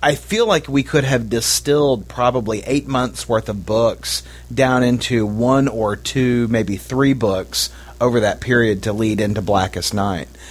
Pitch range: 105-135 Hz